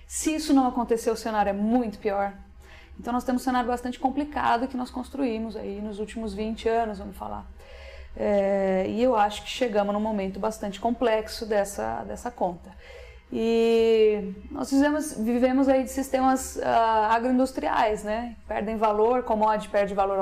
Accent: Brazilian